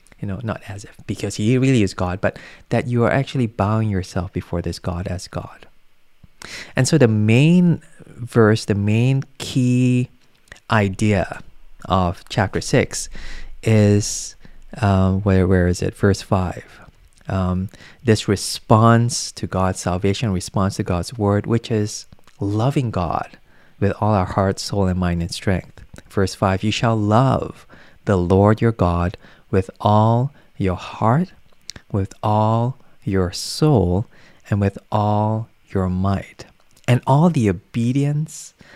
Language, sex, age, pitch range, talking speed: English, male, 20-39, 95-120 Hz, 140 wpm